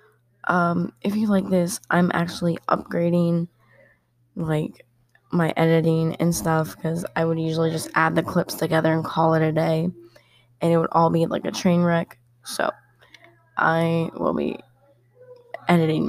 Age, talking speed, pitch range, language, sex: 20-39, 155 wpm, 120-180 Hz, English, female